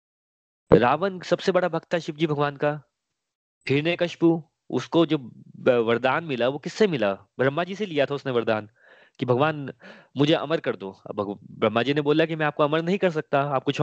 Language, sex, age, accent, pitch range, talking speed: Hindi, male, 20-39, native, 130-165 Hz, 190 wpm